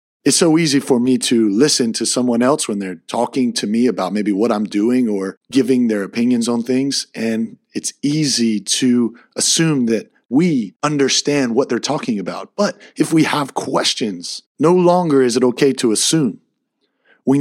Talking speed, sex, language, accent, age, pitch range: 175 wpm, male, English, American, 30-49, 125-170 Hz